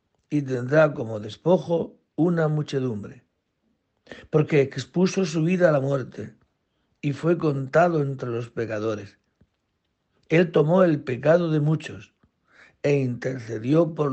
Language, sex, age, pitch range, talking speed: Spanish, male, 60-79, 115-155 Hz, 120 wpm